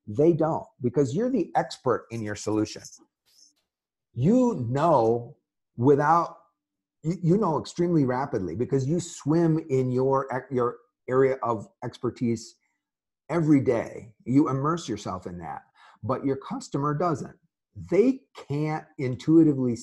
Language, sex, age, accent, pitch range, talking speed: English, male, 50-69, American, 105-145 Hz, 120 wpm